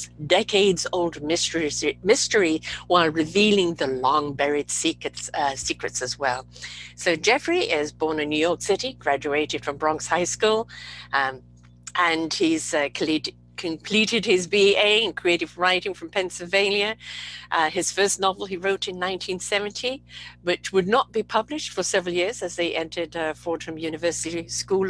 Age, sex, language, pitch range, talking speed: 60-79, female, English, 165-220 Hz, 150 wpm